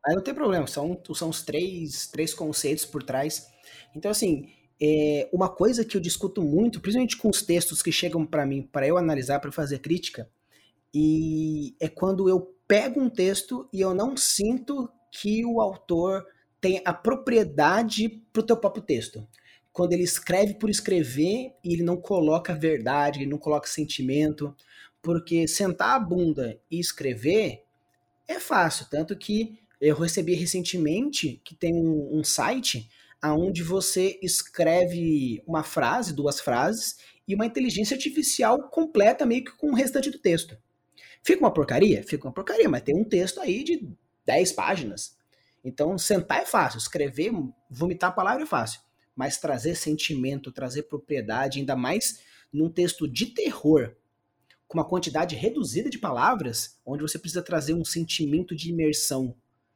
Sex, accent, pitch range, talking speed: male, Brazilian, 150-200 Hz, 155 wpm